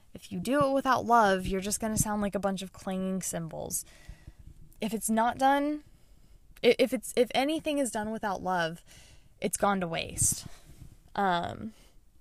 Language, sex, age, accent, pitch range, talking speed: English, female, 10-29, American, 185-225 Hz, 160 wpm